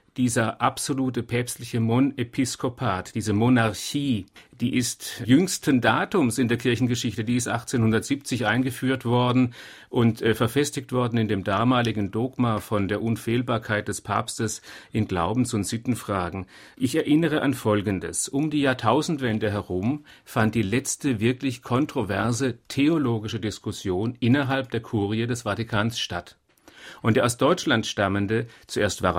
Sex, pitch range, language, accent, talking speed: male, 110-130 Hz, German, German, 130 wpm